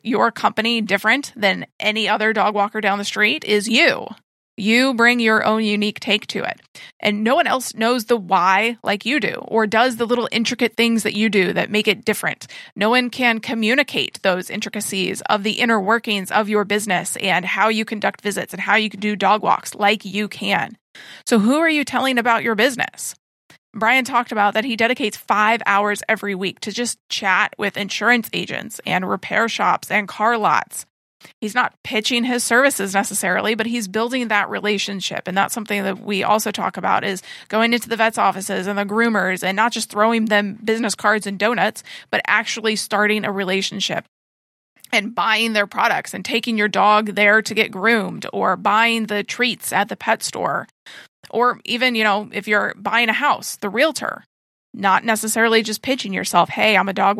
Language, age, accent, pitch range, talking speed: English, 30-49, American, 205-230 Hz, 195 wpm